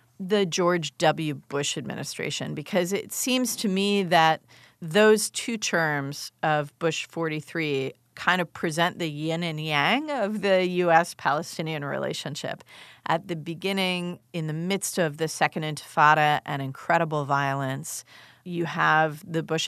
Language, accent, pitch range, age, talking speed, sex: English, American, 150-195 Hz, 40-59, 135 wpm, female